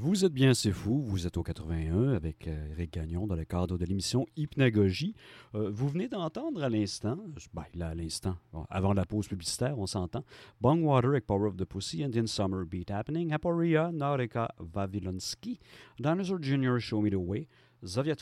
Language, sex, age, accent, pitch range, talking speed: French, male, 50-69, French, 90-125 Hz, 180 wpm